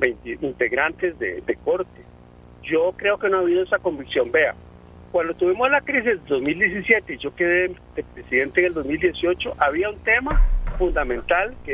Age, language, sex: 50-69, Spanish, male